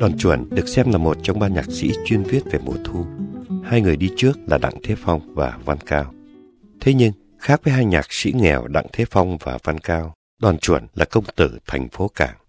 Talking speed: 230 wpm